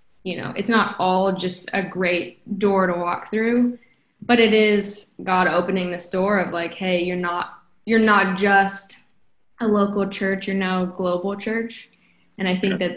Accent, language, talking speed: American, English, 175 wpm